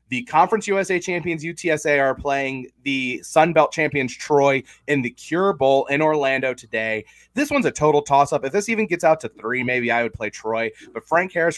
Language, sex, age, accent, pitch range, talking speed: English, male, 30-49, American, 120-155 Hz, 200 wpm